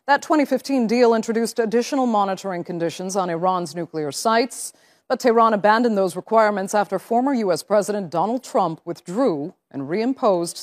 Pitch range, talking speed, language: 185-230 Hz, 140 wpm, English